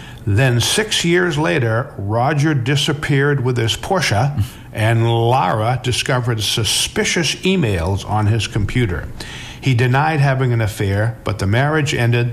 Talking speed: 125 wpm